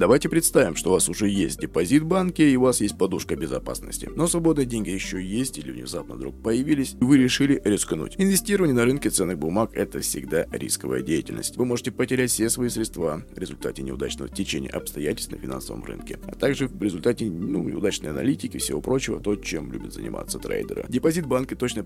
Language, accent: Russian, native